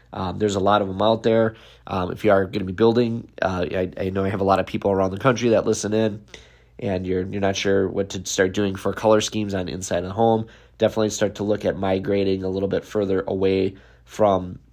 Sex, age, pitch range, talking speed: male, 20-39, 90-105 Hz, 245 wpm